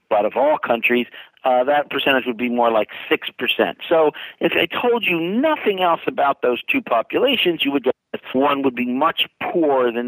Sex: male